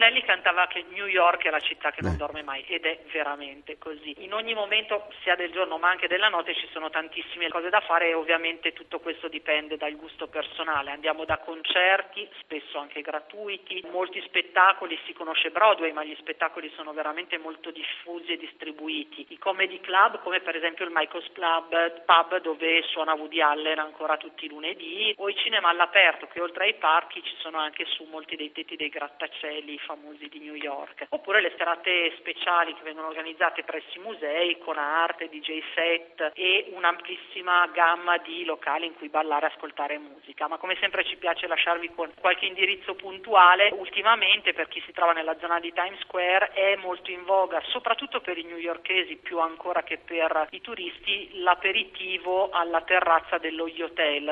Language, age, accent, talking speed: Italian, 40-59, native, 180 wpm